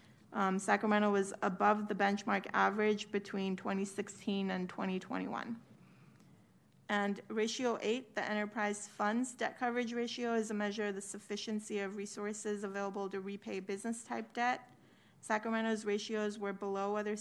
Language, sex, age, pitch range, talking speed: English, female, 30-49, 200-220 Hz, 135 wpm